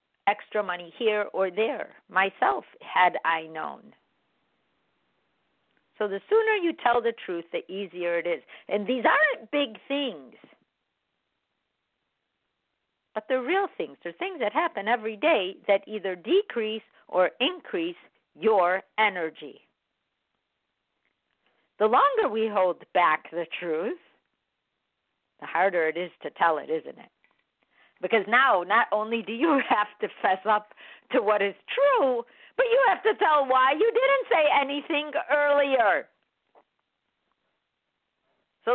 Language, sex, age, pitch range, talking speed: English, female, 50-69, 200-335 Hz, 130 wpm